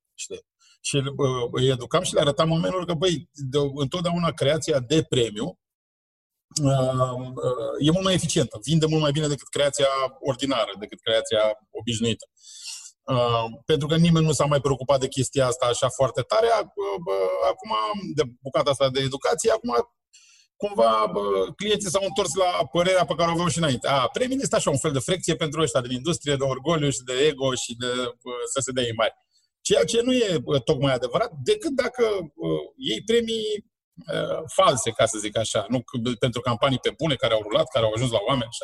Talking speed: 195 wpm